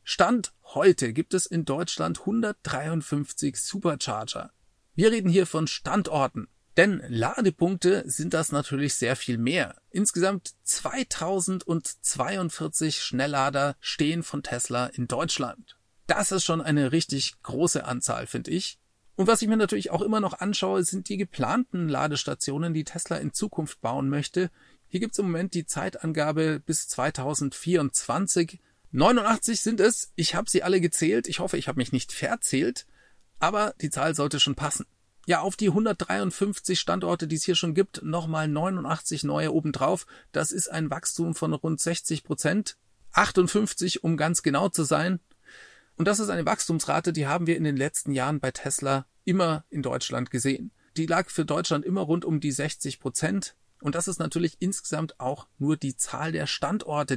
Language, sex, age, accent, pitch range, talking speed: German, male, 40-59, German, 145-185 Hz, 160 wpm